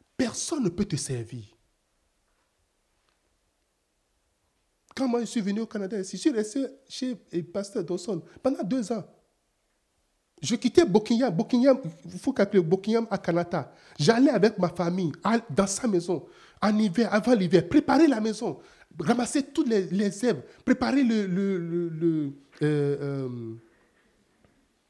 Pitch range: 185-280 Hz